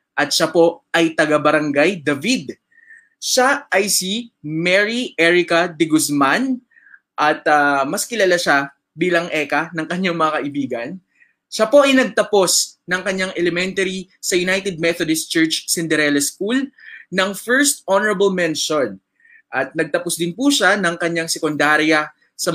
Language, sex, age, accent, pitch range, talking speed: English, male, 20-39, Filipino, 155-190 Hz, 135 wpm